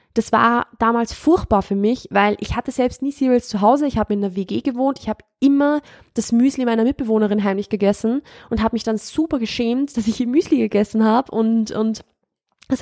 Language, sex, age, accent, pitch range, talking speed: German, female, 20-39, German, 210-250 Hz, 205 wpm